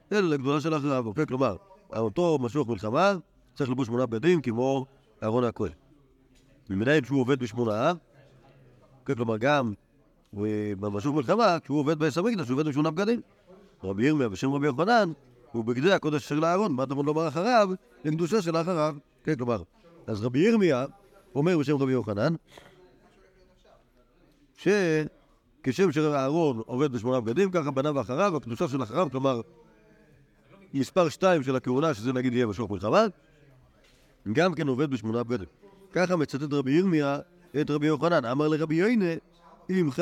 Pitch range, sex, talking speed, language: 125-165 Hz, male, 125 wpm, Hebrew